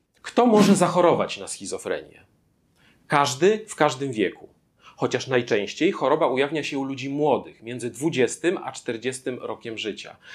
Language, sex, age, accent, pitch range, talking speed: Polish, male, 40-59, native, 130-165 Hz, 135 wpm